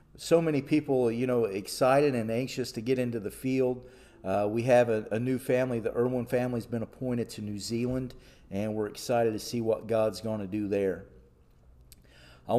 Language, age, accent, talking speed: English, 50-69, American, 195 wpm